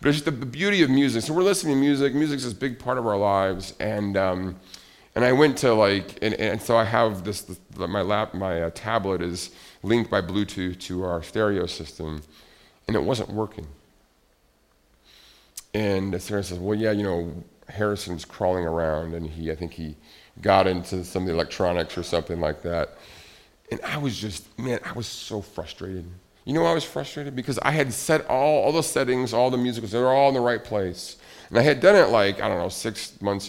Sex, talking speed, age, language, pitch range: male, 215 wpm, 40-59, English, 95-130 Hz